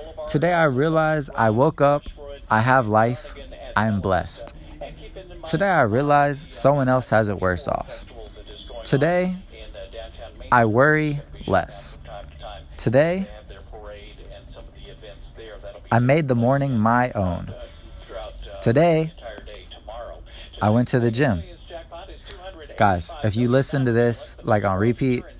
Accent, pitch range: American, 100-135 Hz